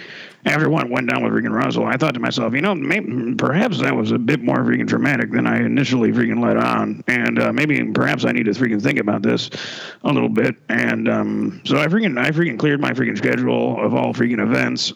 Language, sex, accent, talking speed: English, male, American, 230 wpm